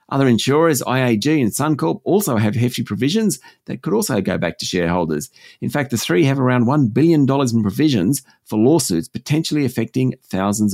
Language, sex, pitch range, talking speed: English, male, 110-150 Hz, 175 wpm